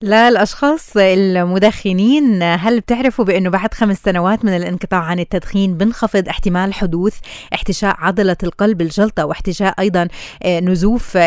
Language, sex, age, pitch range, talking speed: Arabic, female, 20-39, 175-210 Hz, 120 wpm